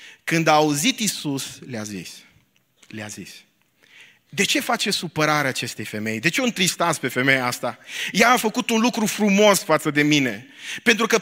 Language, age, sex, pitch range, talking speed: Romanian, 30-49, male, 170-230 Hz, 170 wpm